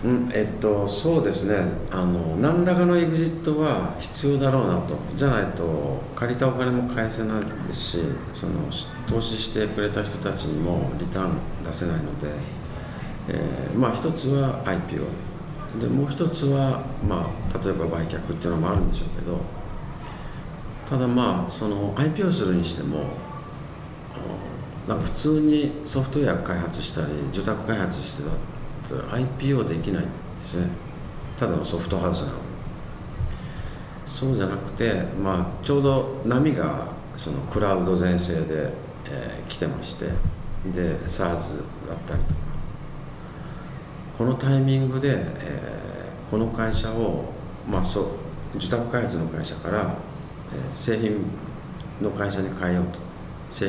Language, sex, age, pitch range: Japanese, male, 50-69, 90-135 Hz